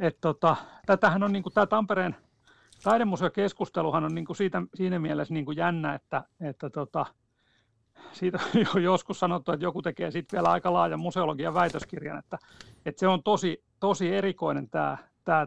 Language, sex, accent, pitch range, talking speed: Finnish, male, native, 155-190 Hz, 145 wpm